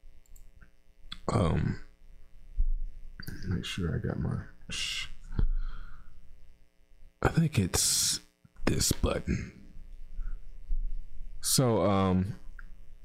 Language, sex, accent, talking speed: English, male, American, 65 wpm